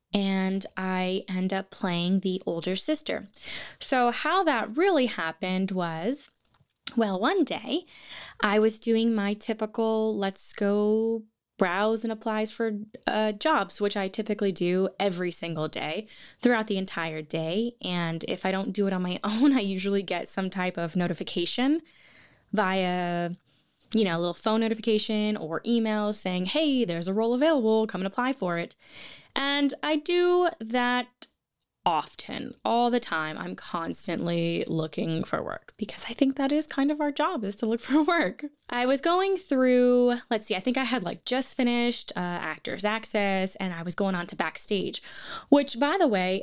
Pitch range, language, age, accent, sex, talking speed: 185-245 Hz, English, 10-29, American, female, 170 wpm